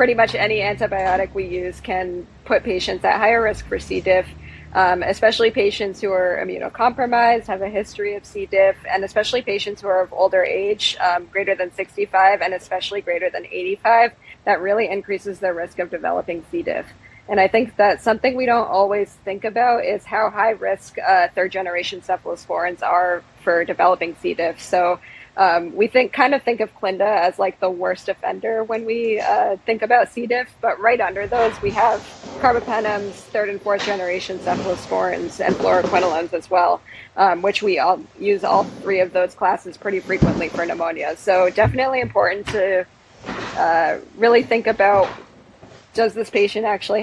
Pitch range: 185-220 Hz